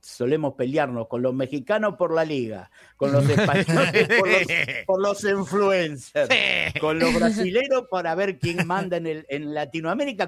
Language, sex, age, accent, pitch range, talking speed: Spanish, male, 50-69, Argentinian, 125-175 Hz, 145 wpm